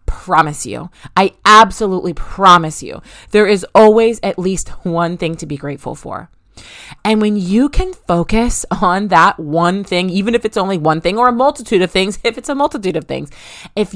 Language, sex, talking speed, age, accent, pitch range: English, female, 190 wpm, 30-49, American, 160-215 Hz